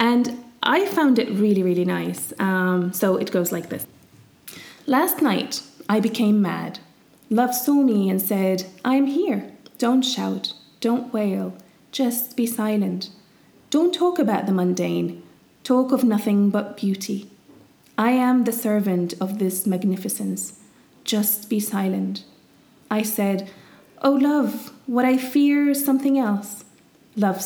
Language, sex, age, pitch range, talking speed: English, female, 30-49, 190-245 Hz, 140 wpm